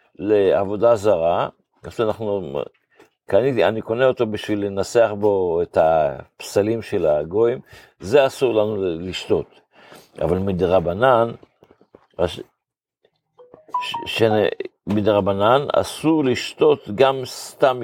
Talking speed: 85 wpm